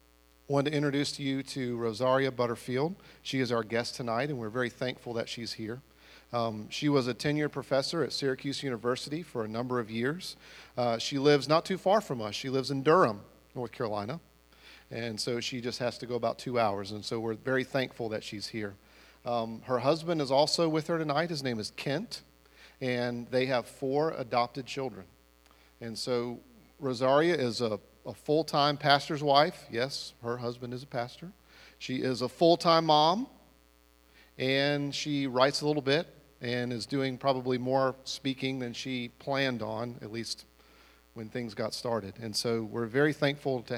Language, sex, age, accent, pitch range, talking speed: English, male, 40-59, American, 110-140 Hz, 180 wpm